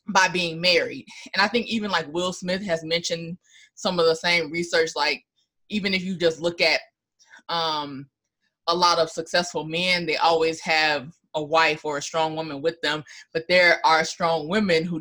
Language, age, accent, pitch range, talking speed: English, 20-39, American, 165-200 Hz, 190 wpm